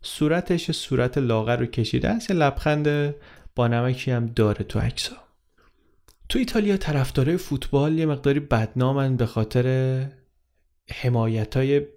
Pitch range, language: 115-140 Hz, Persian